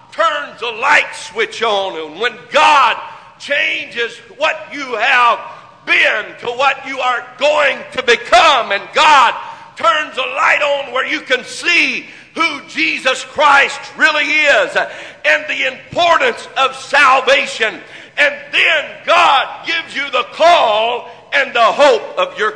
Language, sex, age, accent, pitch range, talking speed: English, male, 50-69, American, 230-295 Hz, 140 wpm